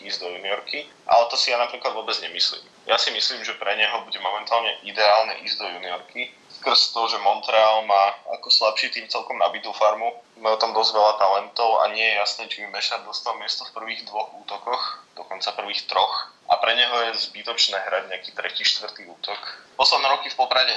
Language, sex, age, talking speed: Slovak, male, 20-39, 190 wpm